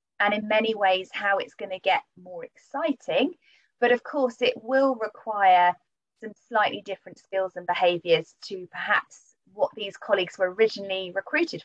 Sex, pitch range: female, 185-230 Hz